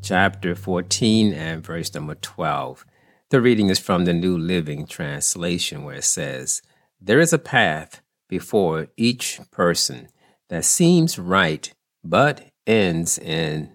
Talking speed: 130 wpm